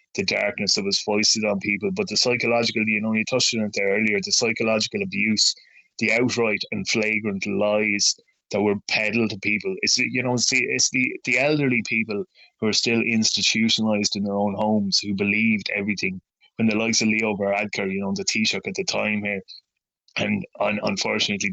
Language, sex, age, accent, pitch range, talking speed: English, male, 20-39, Irish, 105-120 Hz, 195 wpm